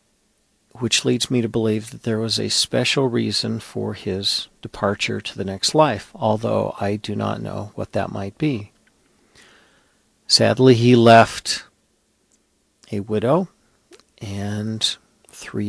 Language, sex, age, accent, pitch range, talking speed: English, male, 50-69, American, 105-120 Hz, 130 wpm